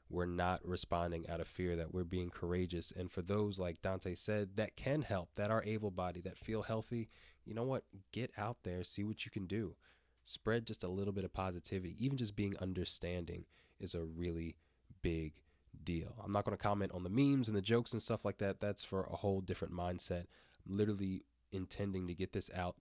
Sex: male